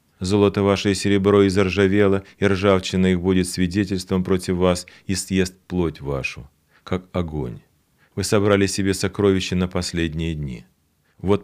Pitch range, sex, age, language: 85-100 Hz, male, 40-59, Russian